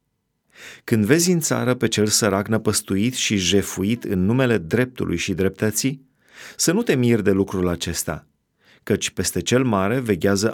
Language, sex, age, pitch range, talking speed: Romanian, male, 30-49, 95-130 Hz, 155 wpm